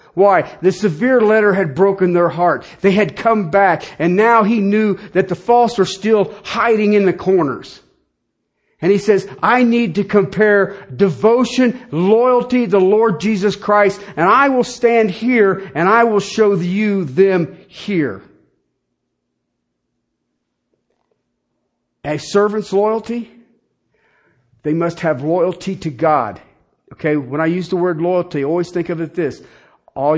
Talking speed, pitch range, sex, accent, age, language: 145 wpm, 155-220 Hz, male, American, 50-69, English